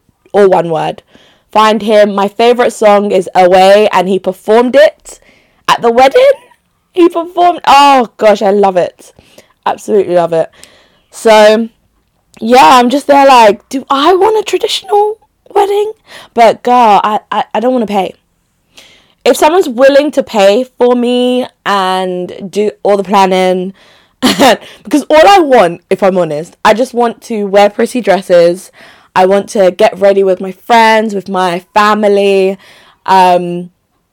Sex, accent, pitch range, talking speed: female, British, 180-230 Hz, 150 wpm